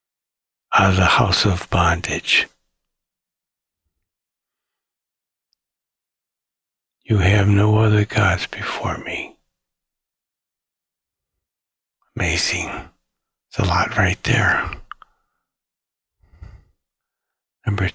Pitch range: 100-120 Hz